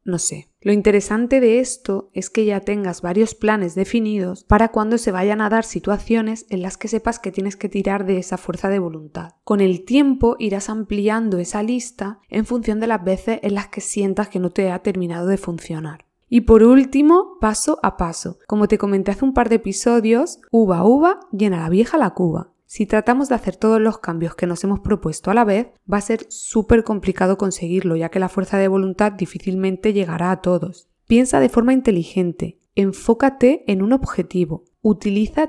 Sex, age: female, 20-39